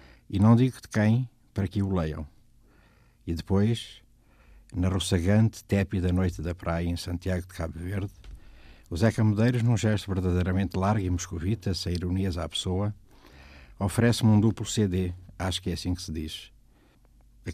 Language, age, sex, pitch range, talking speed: Portuguese, 60-79, male, 85-100 Hz, 160 wpm